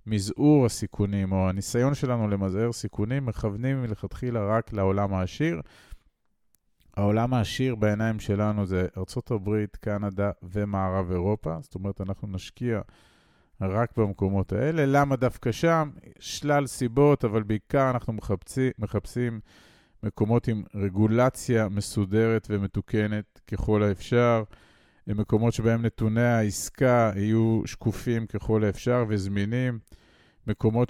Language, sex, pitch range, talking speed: Hebrew, male, 95-115 Hz, 105 wpm